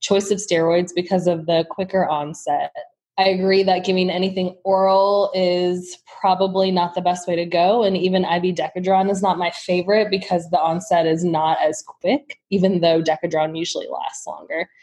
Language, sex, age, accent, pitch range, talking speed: English, female, 20-39, American, 175-200 Hz, 175 wpm